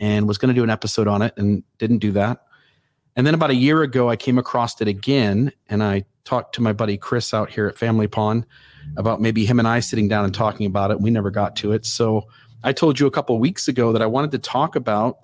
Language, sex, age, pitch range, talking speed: English, male, 40-59, 110-135 Hz, 265 wpm